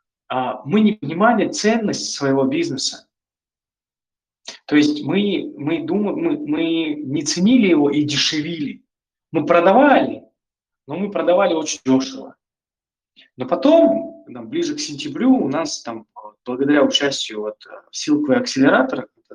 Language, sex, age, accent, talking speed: Russian, male, 20-39, native, 125 wpm